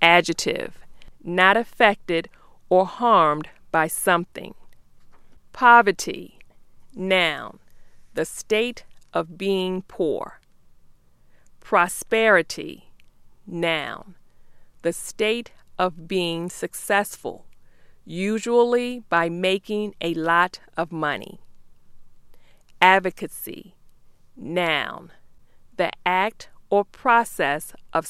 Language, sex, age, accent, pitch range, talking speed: English, female, 40-59, American, 170-210 Hz, 75 wpm